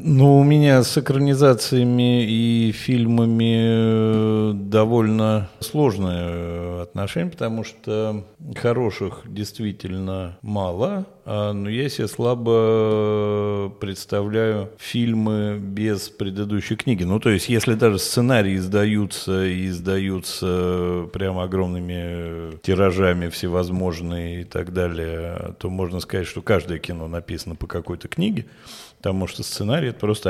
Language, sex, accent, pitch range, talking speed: Russian, male, native, 90-120 Hz, 110 wpm